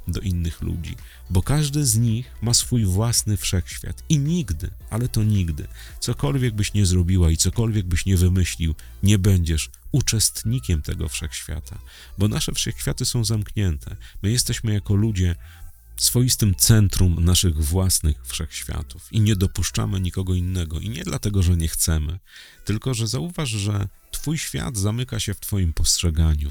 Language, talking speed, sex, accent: Polish, 150 wpm, male, native